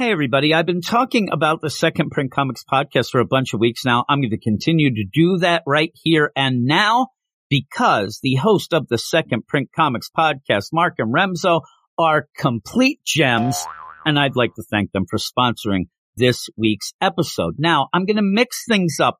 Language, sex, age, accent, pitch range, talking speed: English, male, 50-69, American, 120-165 Hz, 190 wpm